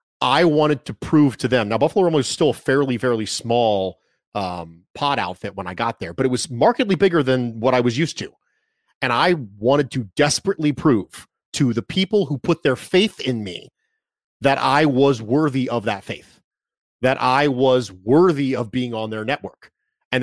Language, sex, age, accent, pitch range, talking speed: English, male, 30-49, American, 125-160 Hz, 195 wpm